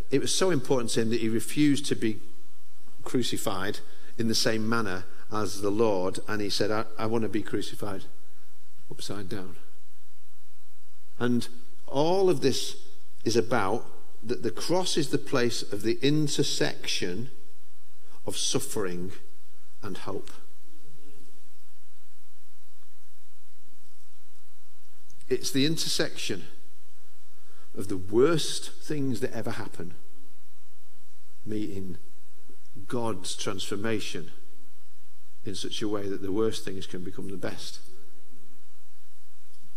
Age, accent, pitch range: 50-69, British, 105-140 Hz